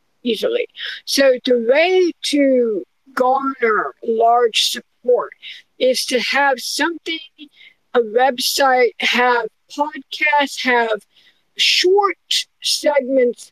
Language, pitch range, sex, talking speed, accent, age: English, 240-325 Hz, female, 85 wpm, American, 50-69